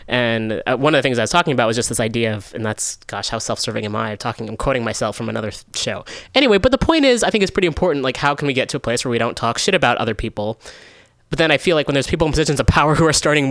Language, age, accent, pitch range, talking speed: English, 20-39, American, 110-140 Hz, 305 wpm